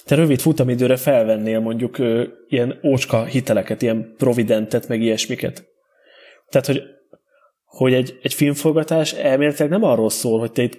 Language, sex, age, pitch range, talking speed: Hungarian, male, 20-39, 115-135 Hz, 150 wpm